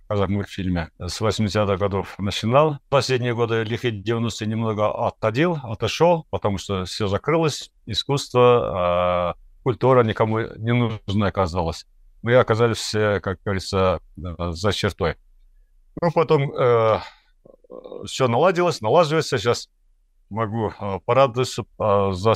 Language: Russian